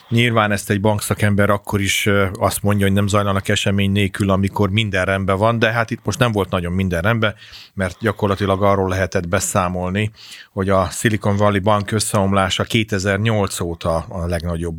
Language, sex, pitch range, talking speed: Hungarian, male, 95-110 Hz, 165 wpm